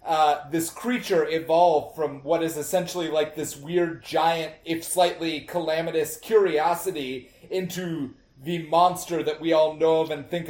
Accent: American